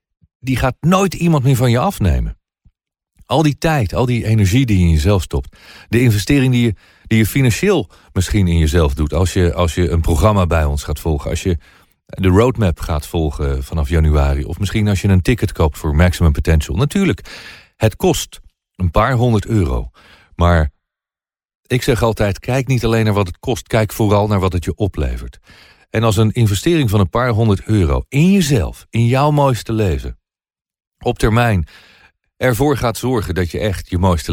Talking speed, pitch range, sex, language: 185 wpm, 85-120 Hz, male, Dutch